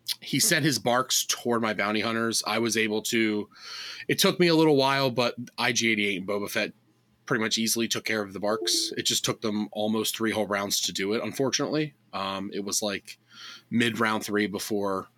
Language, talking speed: English, 200 wpm